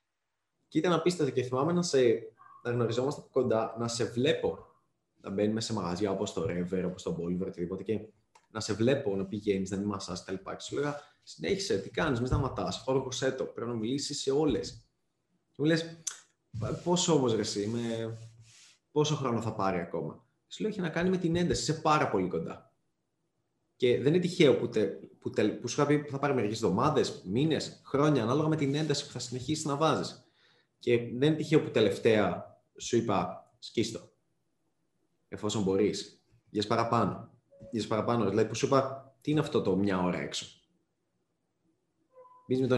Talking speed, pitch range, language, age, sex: 180 wpm, 105-155 Hz, Greek, 20-39, male